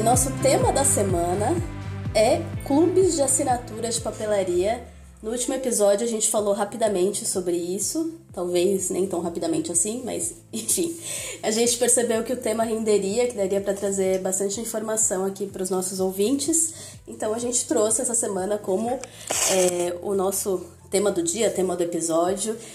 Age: 20-39